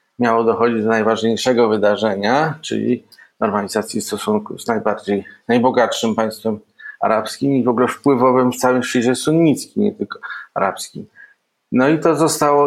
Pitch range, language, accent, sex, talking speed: 110-140 Hz, Polish, native, male, 130 wpm